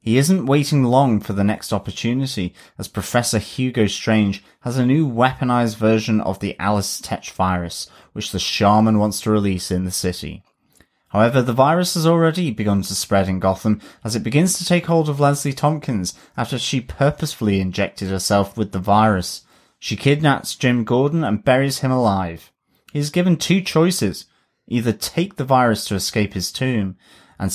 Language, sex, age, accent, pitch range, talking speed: English, male, 30-49, British, 100-130 Hz, 170 wpm